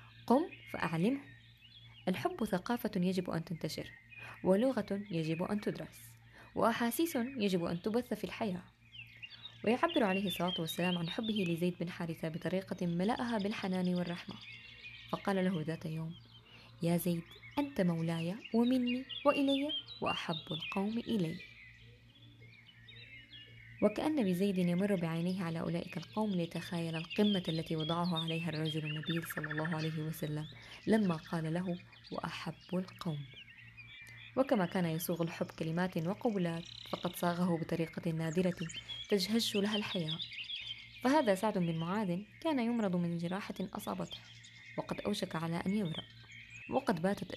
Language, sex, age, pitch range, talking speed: Arabic, female, 20-39, 155-195 Hz, 120 wpm